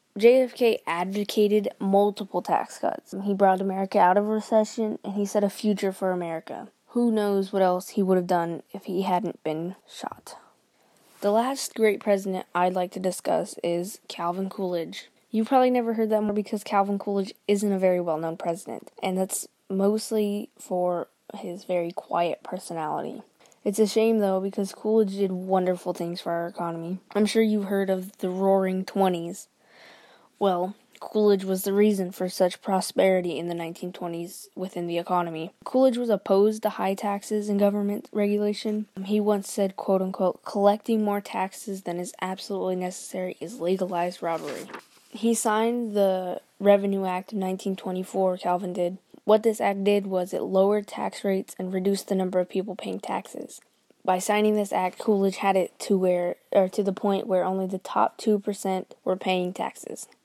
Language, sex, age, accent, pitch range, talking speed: English, female, 10-29, American, 185-210 Hz, 170 wpm